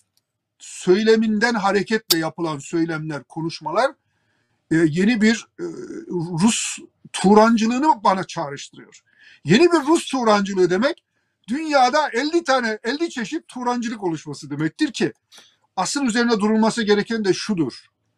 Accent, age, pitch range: native, 50-69, 170-245 Hz